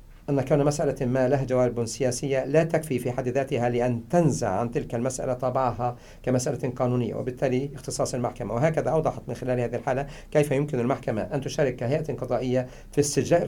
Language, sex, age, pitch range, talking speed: English, male, 50-69, 120-140 Hz, 170 wpm